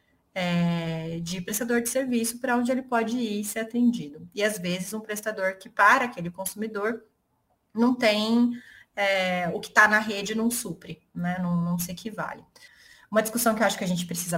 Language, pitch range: Portuguese, 175-230 Hz